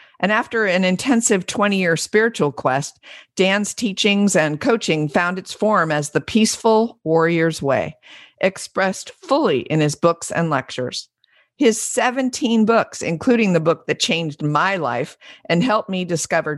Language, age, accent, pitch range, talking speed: English, 50-69, American, 155-200 Hz, 145 wpm